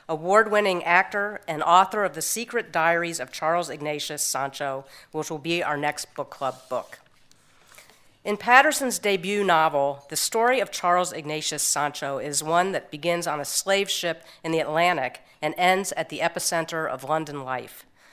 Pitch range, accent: 150-190 Hz, American